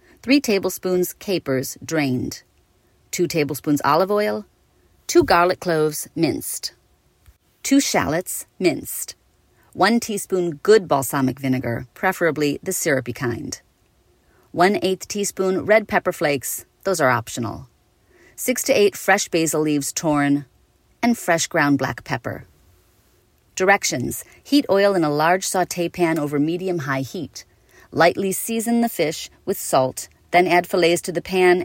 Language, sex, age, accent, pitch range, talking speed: English, female, 40-59, American, 140-190 Hz, 130 wpm